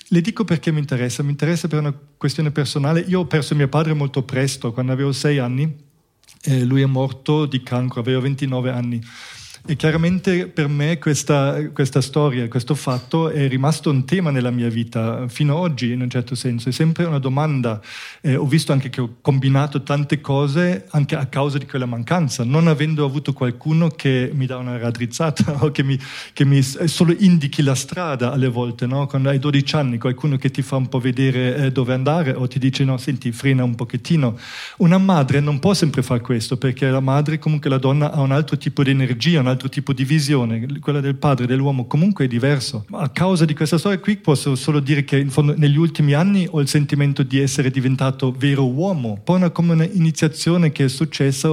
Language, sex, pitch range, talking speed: Italian, male, 130-155 Hz, 205 wpm